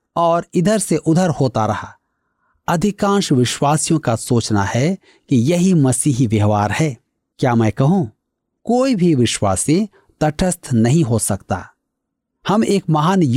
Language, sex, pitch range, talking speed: Hindi, male, 125-190 Hz, 105 wpm